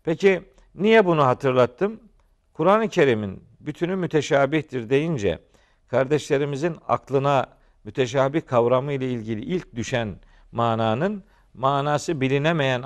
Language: Turkish